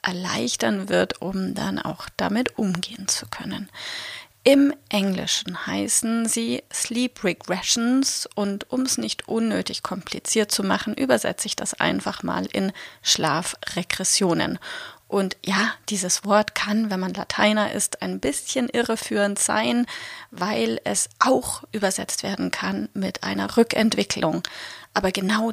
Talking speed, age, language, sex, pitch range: 125 wpm, 30-49, German, female, 200-245 Hz